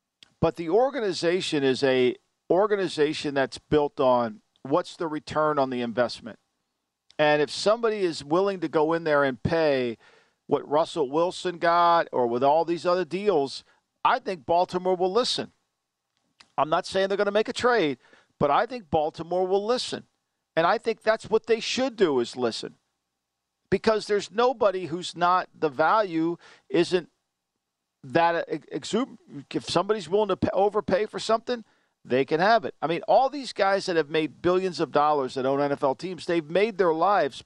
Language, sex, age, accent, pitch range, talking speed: English, male, 50-69, American, 155-205 Hz, 170 wpm